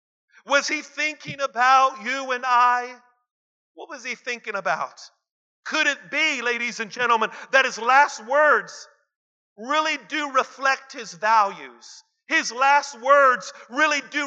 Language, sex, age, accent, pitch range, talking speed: English, male, 50-69, American, 235-280 Hz, 135 wpm